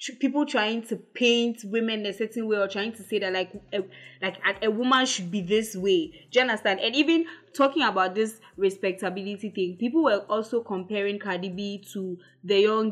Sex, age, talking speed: female, 20-39, 190 wpm